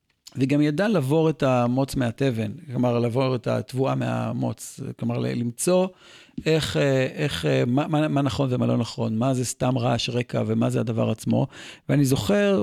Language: Hebrew